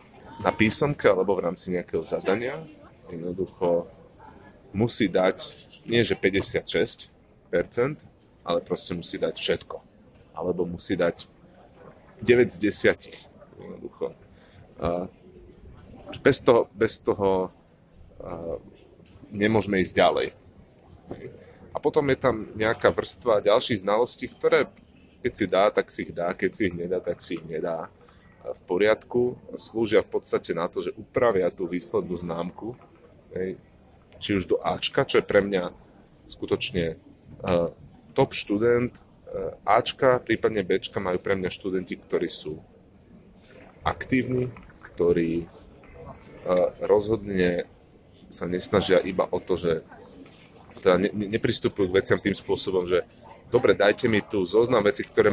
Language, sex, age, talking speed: Slovak, male, 30-49, 115 wpm